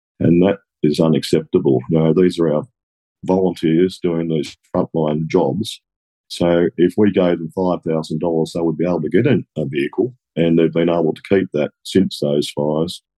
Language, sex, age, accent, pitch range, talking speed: English, male, 50-69, Australian, 80-90 Hz, 175 wpm